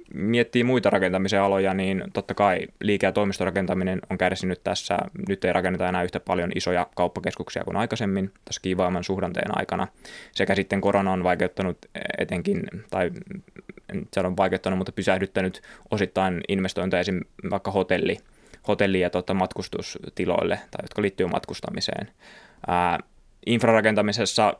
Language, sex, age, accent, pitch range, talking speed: Finnish, male, 20-39, native, 95-105 Hz, 130 wpm